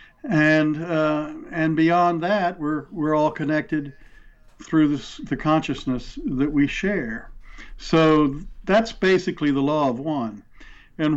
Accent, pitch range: American, 130-155 Hz